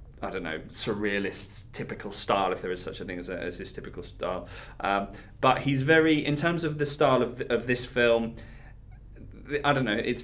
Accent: British